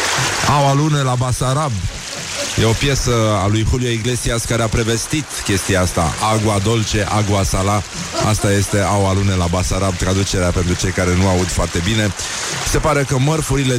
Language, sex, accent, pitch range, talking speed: Romanian, male, native, 100-125 Hz, 165 wpm